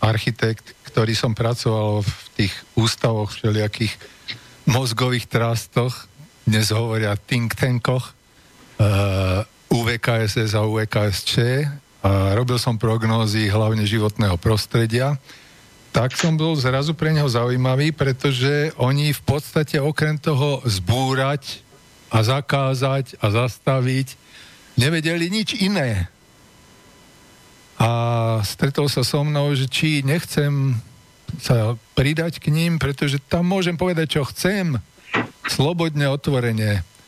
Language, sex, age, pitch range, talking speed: Slovak, male, 50-69, 115-145 Hz, 110 wpm